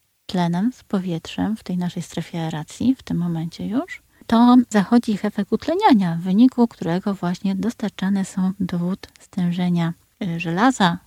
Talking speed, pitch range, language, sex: 145 wpm, 180-225 Hz, Polish, female